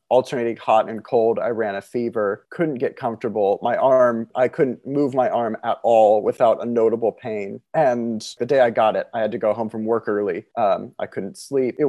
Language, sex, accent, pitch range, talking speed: English, male, American, 110-135 Hz, 215 wpm